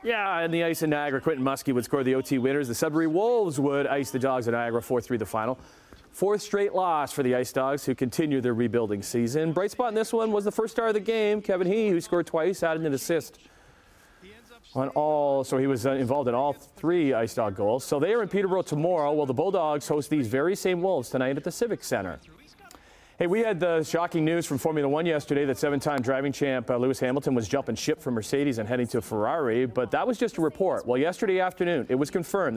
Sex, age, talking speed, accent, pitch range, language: male, 40-59, 230 wpm, American, 130-175 Hz, English